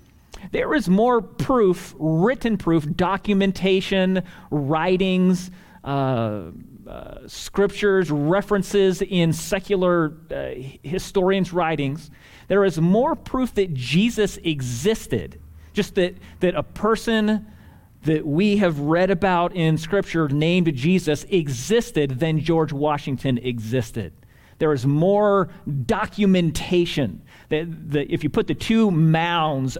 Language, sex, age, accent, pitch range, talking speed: English, male, 40-59, American, 130-185 Hz, 110 wpm